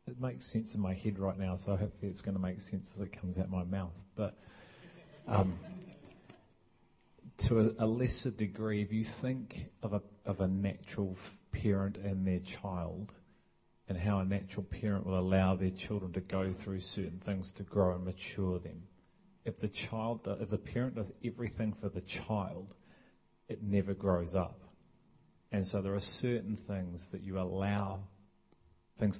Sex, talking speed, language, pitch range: male, 175 wpm, English, 95-105 Hz